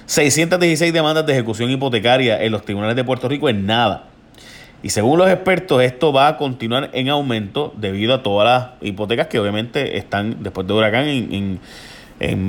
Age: 30-49